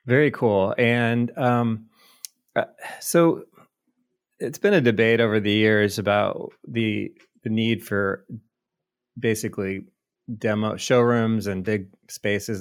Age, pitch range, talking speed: 30-49, 95-115 Hz, 110 wpm